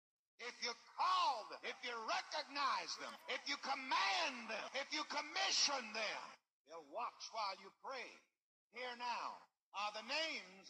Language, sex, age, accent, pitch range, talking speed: English, male, 60-79, American, 235-305 Hz, 145 wpm